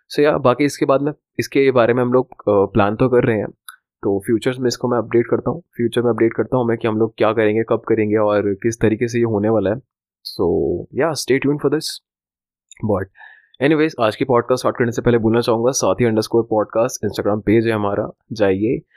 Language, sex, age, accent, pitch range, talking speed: Hindi, male, 20-39, native, 105-130 Hz, 215 wpm